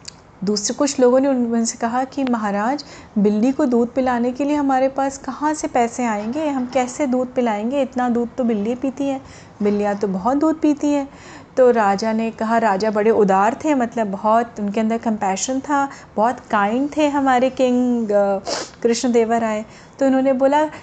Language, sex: Hindi, female